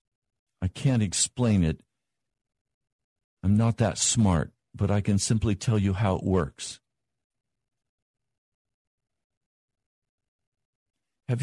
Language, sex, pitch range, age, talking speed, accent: English, male, 95-115 Hz, 50-69, 95 wpm, American